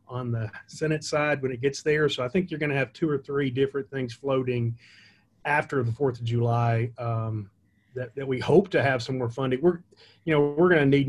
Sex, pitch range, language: male, 120-140 Hz, English